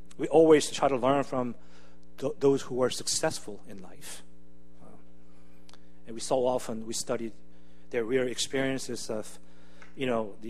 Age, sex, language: 40-59, male, Korean